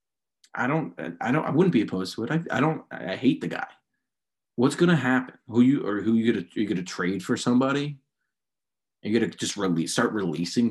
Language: English